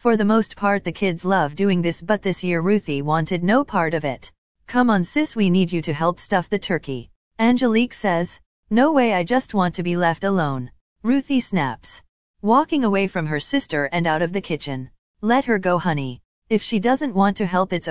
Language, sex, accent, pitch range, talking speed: English, female, American, 165-225 Hz, 210 wpm